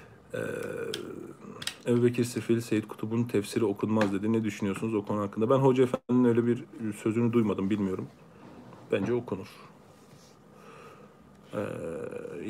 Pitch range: 110-130 Hz